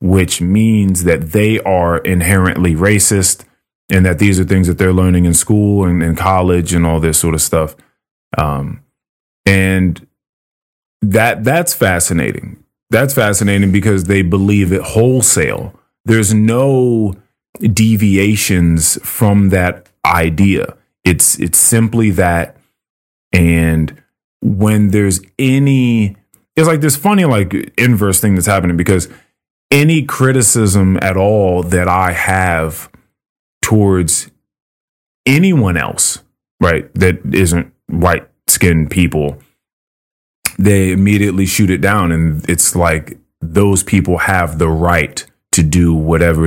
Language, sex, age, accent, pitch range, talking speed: English, male, 30-49, American, 85-105 Hz, 120 wpm